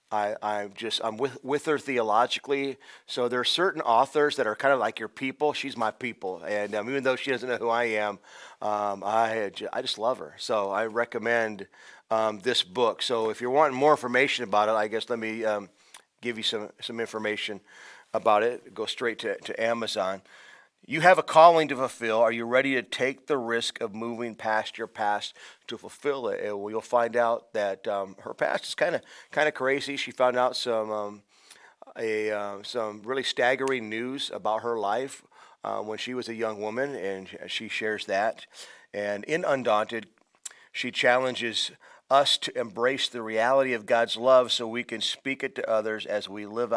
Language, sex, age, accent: English, male, 40-59, American